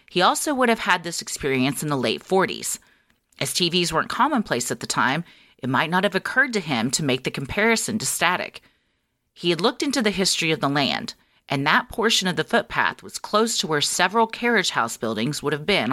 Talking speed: 215 wpm